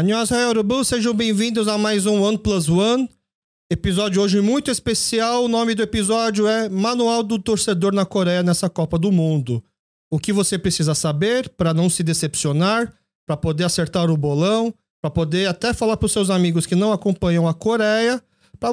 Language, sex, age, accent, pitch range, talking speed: Portuguese, male, 40-59, Brazilian, 160-220 Hz, 175 wpm